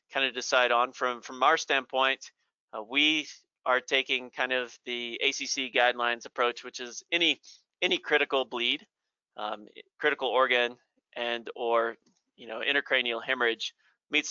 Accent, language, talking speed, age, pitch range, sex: American, English, 145 wpm, 30-49, 120-135 Hz, male